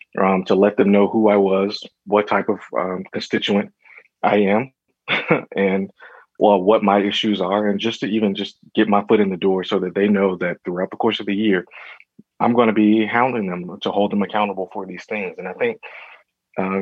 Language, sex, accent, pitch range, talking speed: English, male, American, 95-105 Hz, 215 wpm